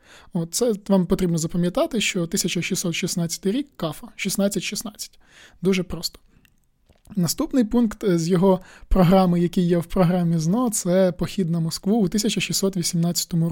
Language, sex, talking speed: Ukrainian, male, 135 wpm